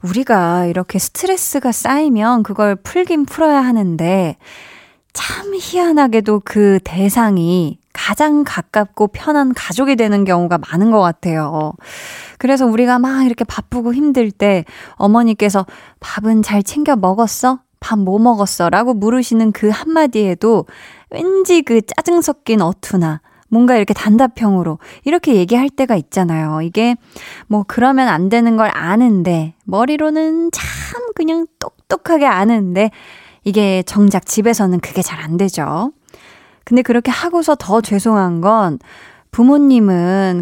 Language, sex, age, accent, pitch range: Korean, female, 20-39, native, 190-255 Hz